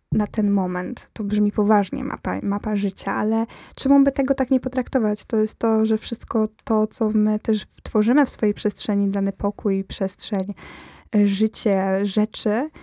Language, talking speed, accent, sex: Polish, 160 wpm, native, female